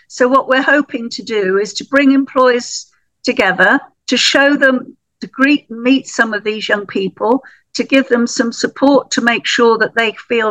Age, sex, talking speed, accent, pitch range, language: 50-69, female, 190 wpm, British, 220-270 Hz, English